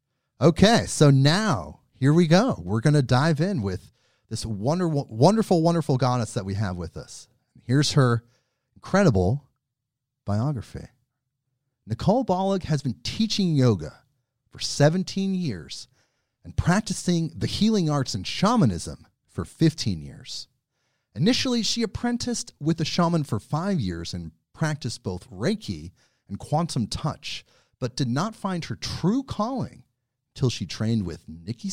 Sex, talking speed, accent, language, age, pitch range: male, 135 wpm, American, English, 40-59, 115-170 Hz